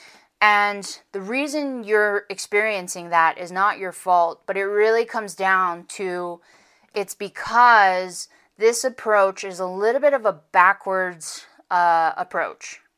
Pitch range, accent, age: 175-205 Hz, American, 20-39